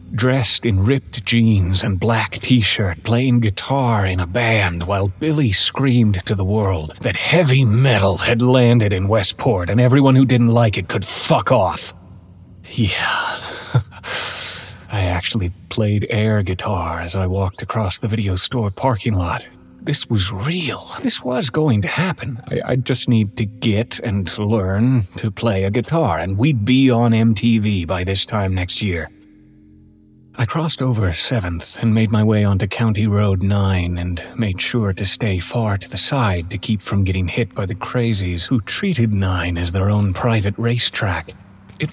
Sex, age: male, 30-49